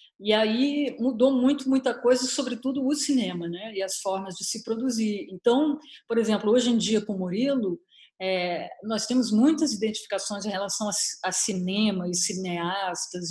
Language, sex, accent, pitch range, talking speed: Portuguese, female, Brazilian, 180-250 Hz, 165 wpm